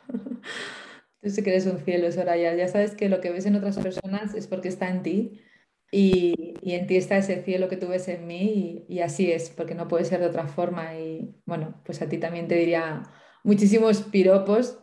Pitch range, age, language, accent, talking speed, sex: 180-220 Hz, 20-39, Spanish, Spanish, 220 wpm, female